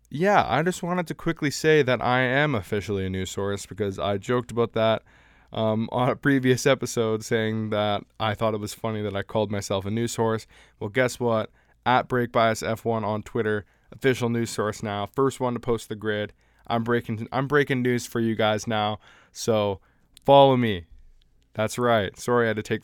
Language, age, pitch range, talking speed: English, 20-39, 100-120 Hz, 190 wpm